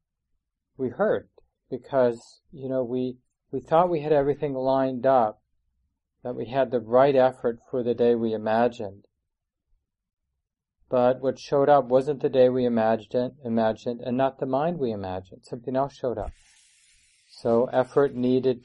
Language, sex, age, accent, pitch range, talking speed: English, male, 40-59, American, 100-125 Hz, 155 wpm